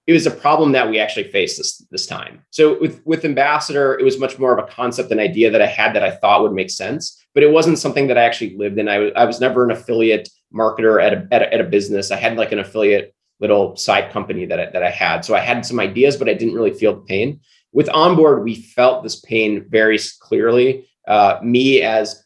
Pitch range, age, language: 110-135 Hz, 30-49, English